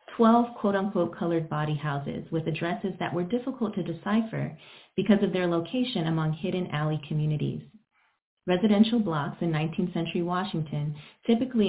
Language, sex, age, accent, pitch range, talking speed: English, female, 30-49, American, 155-195 Hz, 140 wpm